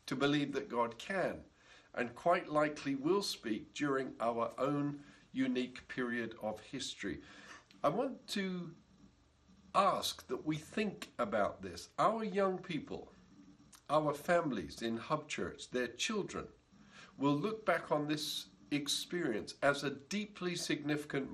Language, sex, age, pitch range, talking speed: English, male, 50-69, 120-165 Hz, 130 wpm